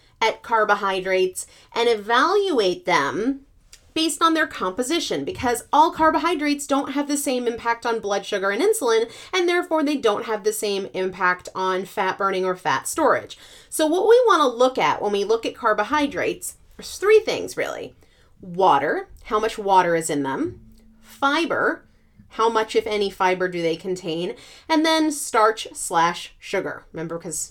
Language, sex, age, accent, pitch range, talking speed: English, female, 30-49, American, 200-315 Hz, 165 wpm